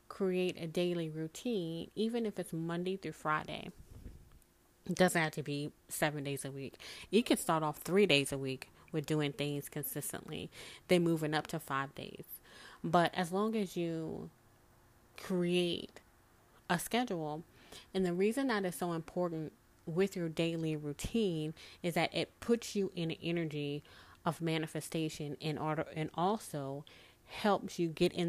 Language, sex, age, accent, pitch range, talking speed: English, female, 20-39, American, 145-180 Hz, 150 wpm